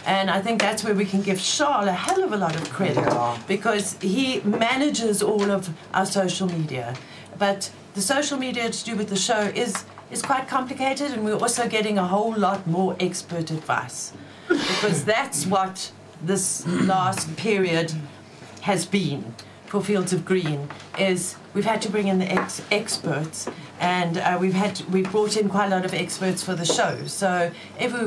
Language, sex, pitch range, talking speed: English, female, 165-215 Hz, 175 wpm